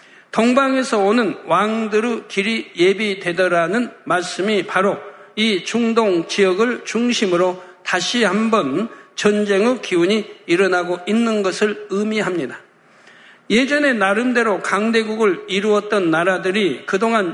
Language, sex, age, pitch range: Korean, male, 60-79, 190-225 Hz